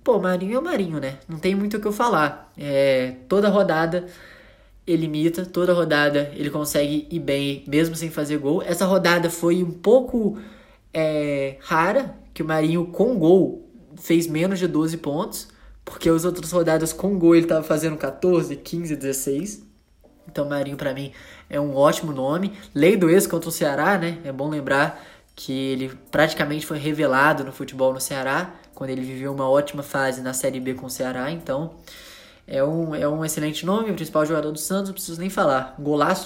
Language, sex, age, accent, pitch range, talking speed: Portuguese, male, 10-29, Brazilian, 140-180 Hz, 190 wpm